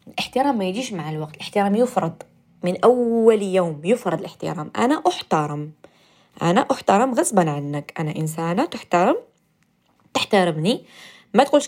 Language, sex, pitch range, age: Arabic, female, 170-220 Hz, 20-39